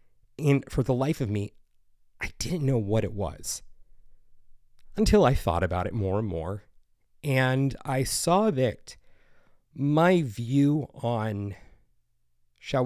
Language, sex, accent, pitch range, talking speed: English, male, American, 95-125 Hz, 130 wpm